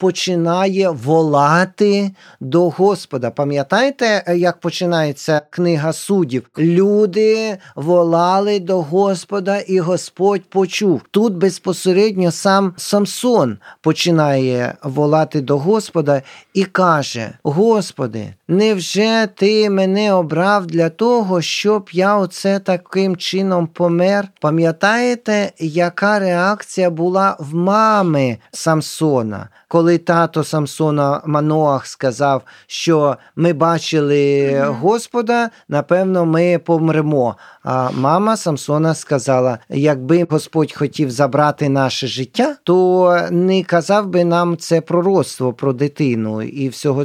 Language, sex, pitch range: Ukrainian, male, 145-190 Hz